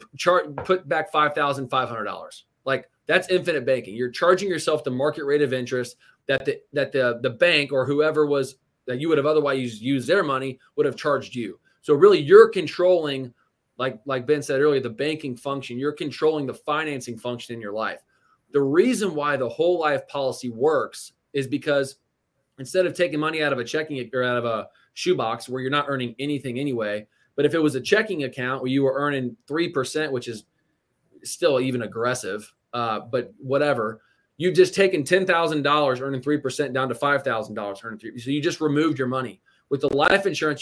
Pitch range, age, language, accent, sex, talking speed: 130-165 Hz, 20-39, English, American, male, 195 wpm